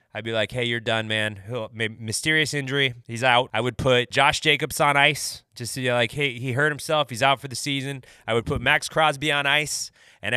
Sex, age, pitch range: male, 30-49, 105-130 Hz